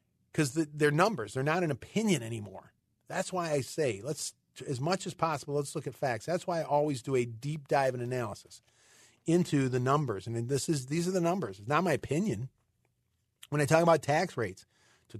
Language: English